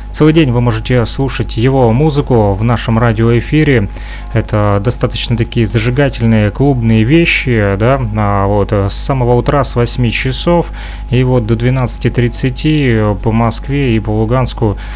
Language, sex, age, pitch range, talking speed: Russian, male, 30-49, 110-130 Hz, 130 wpm